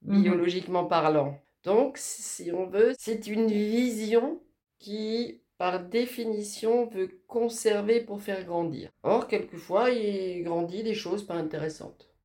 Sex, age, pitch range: female, 40-59, 160-225 Hz